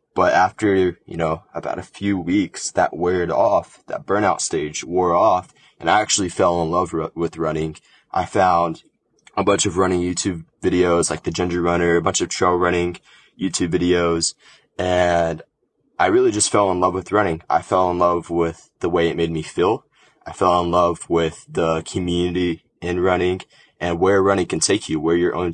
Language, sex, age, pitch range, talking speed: English, male, 20-39, 85-95 Hz, 190 wpm